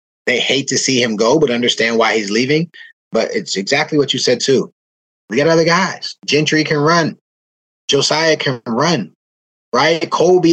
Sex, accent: male, American